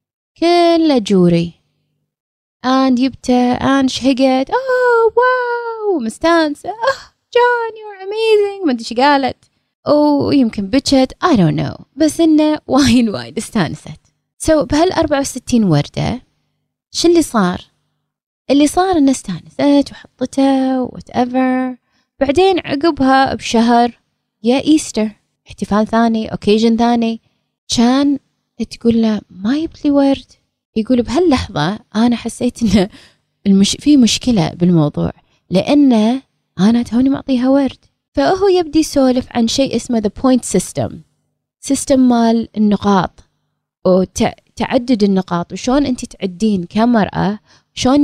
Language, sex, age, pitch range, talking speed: Arabic, female, 20-39, 215-285 Hz, 115 wpm